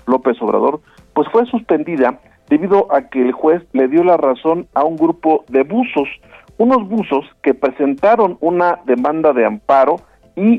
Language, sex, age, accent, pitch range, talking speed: Spanish, male, 50-69, Mexican, 130-190 Hz, 160 wpm